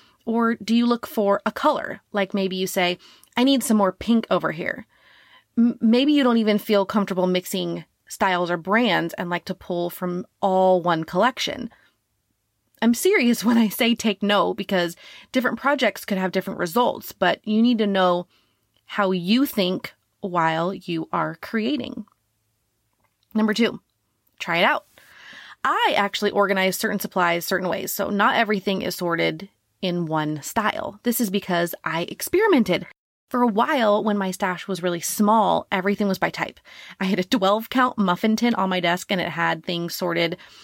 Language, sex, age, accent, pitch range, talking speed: English, female, 30-49, American, 180-230 Hz, 170 wpm